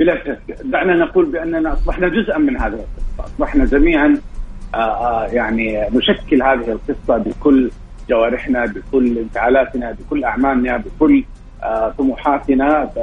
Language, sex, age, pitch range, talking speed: Arabic, male, 40-59, 115-150 Hz, 100 wpm